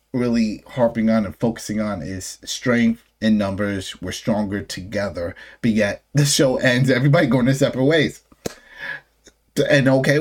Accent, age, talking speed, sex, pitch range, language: American, 30-49, 145 wpm, male, 105-135 Hz, English